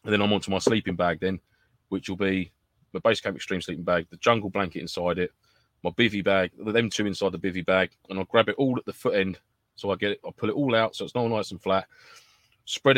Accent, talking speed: British, 265 wpm